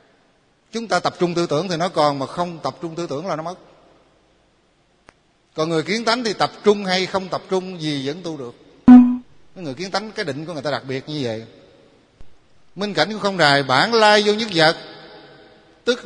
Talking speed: 210 wpm